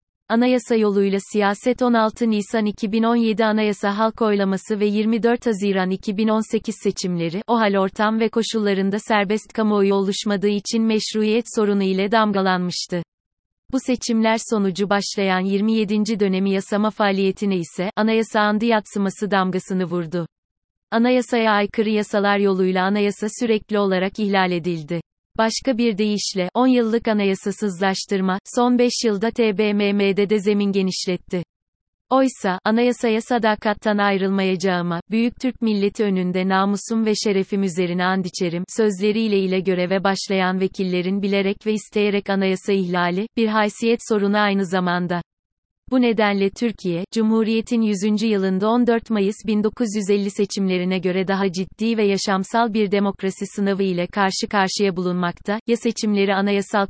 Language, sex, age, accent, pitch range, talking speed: Turkish, female, 30-49, native, 190-220 Hz, 120 wpm